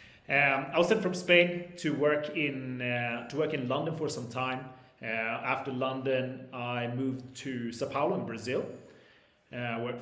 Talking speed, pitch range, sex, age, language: 180 wpm, 120-145 Hz, male, 30-49, English